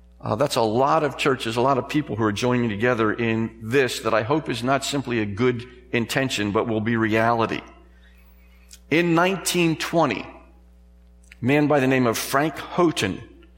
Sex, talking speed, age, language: male, 170 wpm, 50-69, English